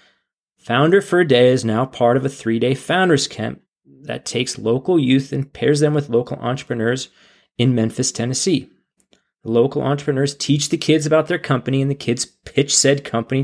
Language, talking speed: English, 180 wpm